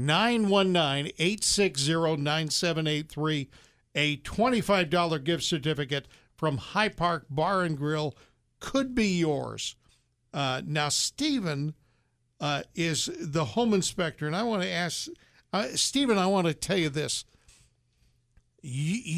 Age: 60-79